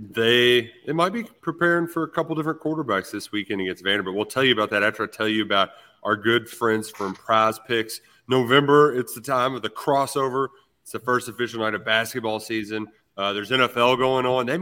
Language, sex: English, male